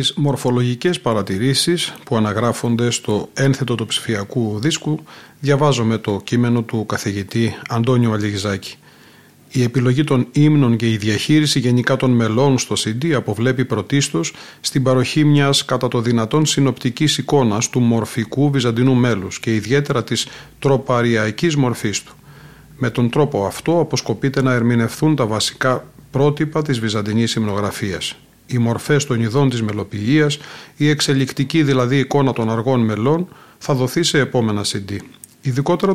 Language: Greek